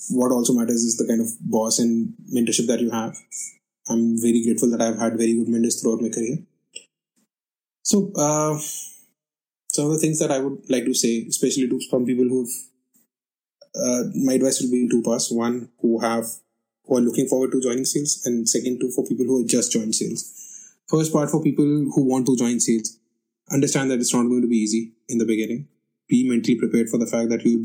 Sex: male